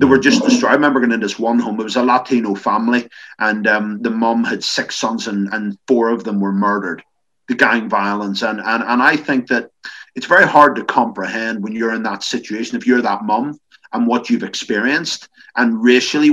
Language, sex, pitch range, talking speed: English, male, 110-150 Hz, 215 wpm